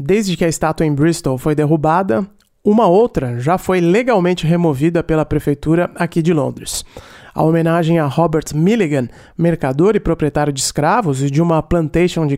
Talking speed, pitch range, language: 165 wpm, 145-175 Hz, English